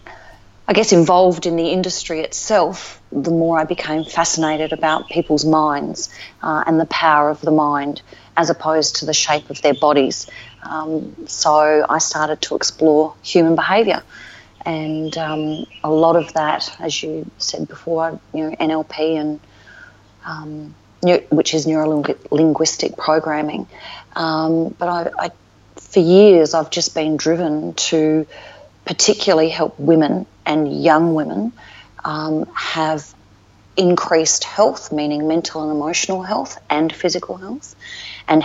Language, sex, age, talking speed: English, female, 40-59, 135 wpm